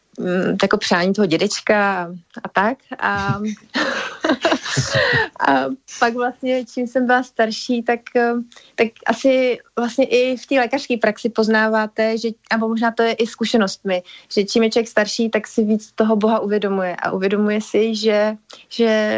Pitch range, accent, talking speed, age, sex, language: 200-230 Hz, native, 145 wpm, 30-49, female, Czech